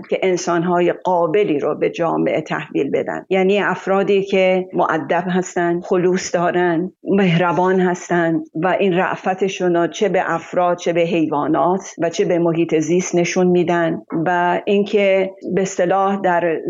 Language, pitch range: Persian, 170-195 Hz